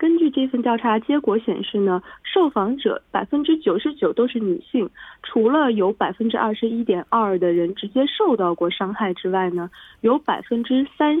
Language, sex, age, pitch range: Korean, female, 20-39, 185-265 Hz